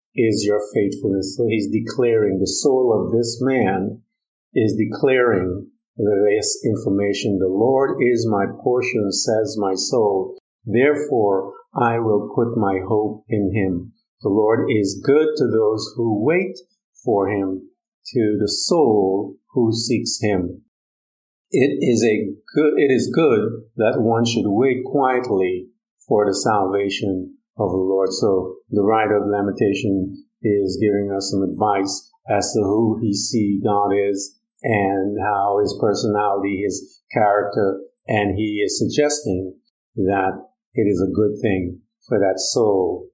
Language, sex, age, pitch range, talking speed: English, male, 50-69, 100-125 Hz, 140 wpm